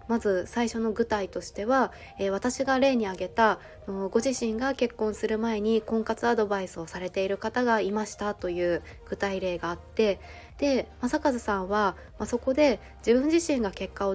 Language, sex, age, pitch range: Japanese, female, 20-39, 200-245 Hz